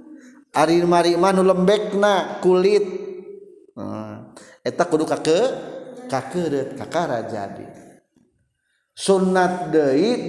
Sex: male